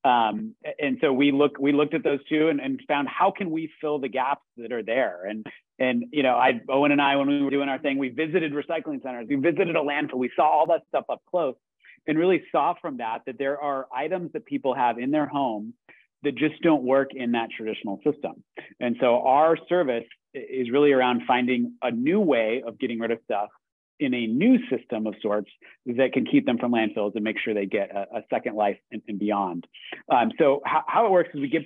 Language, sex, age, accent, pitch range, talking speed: English, male, 40-59, American, 125-155 Hz, 235 wpm